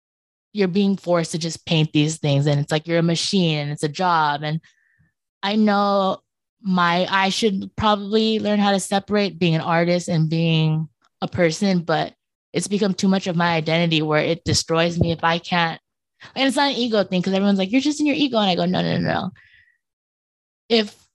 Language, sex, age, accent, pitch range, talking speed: English, female, 20-39, American, 165-205 Hz, 205 wpm